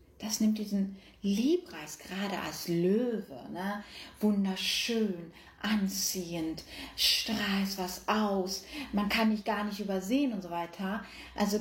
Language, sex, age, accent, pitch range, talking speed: German, female, 30-49, German, 200-270 Hz, 120 wpm